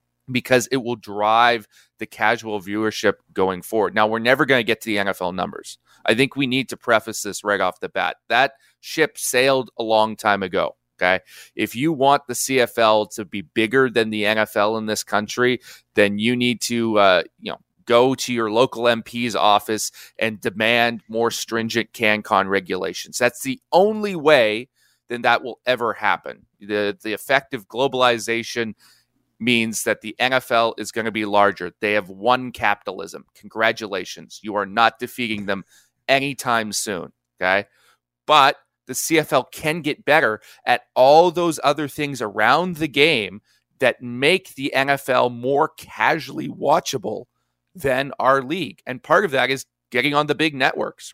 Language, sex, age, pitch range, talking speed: English, male, 30-49, 105-130 Hz, 165 wpm